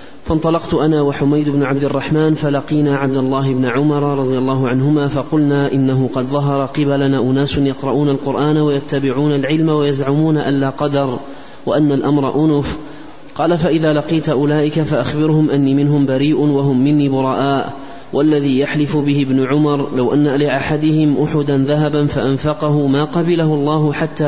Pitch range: 140-150 Hz